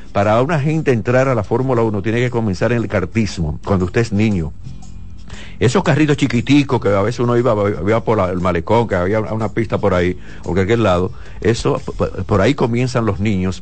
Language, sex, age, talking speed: Spanish, male, 60-79, 205 wpm